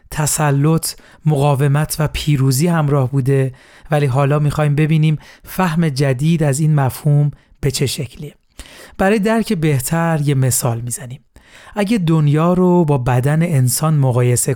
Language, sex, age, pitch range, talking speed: Persian, male, 40-59, 140-165 Hz, 130 wpm